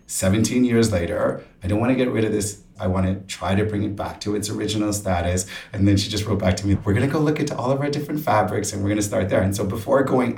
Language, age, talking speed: English, 30-49, 300 wpm